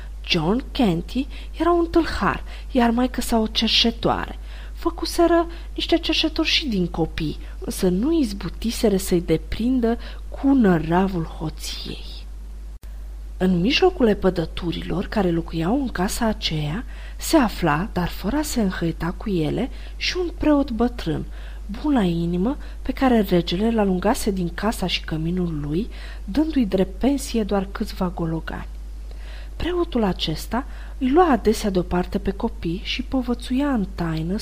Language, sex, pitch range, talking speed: Romanian, female, 170-255 Hz, 125 wpm